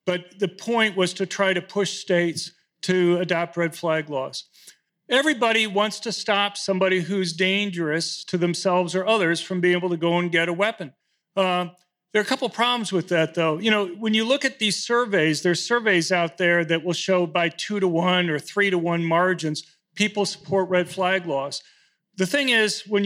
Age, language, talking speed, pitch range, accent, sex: 40-59, English, 200 wpm, 170-205 Hz, American, male